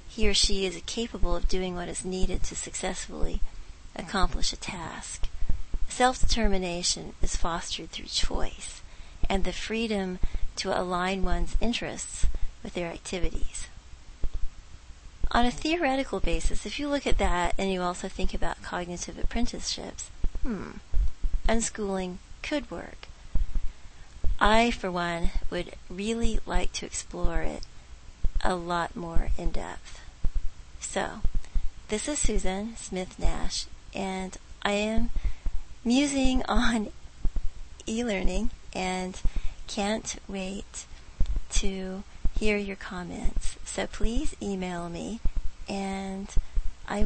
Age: 40-59